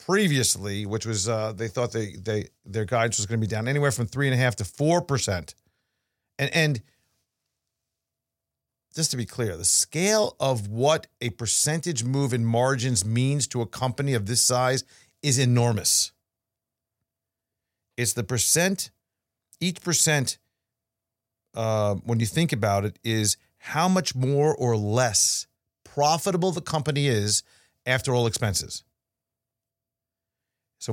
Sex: male